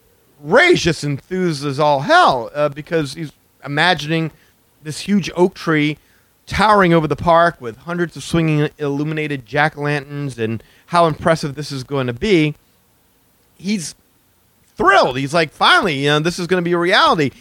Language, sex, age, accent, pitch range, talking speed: English, male, 40-59, American, 130-170 Hz, 160 wpm